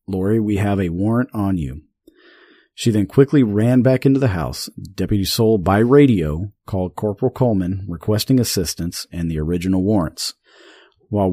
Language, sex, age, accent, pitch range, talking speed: English, male, 40-59, American, 90-120 Hz, 155 wpm